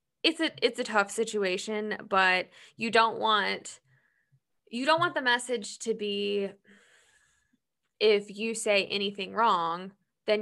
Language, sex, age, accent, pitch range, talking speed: English, female, 10-29, American, 185-230 Hz, 130 wpm